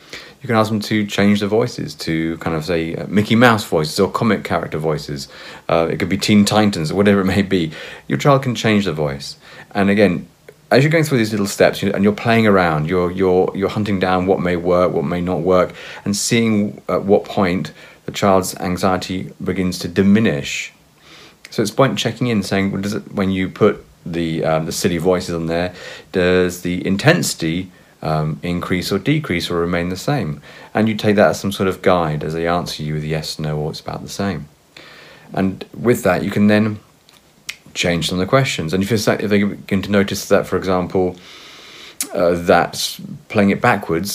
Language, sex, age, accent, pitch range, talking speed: English, male, 40-59, British, 85-105 Hz, 205 wpm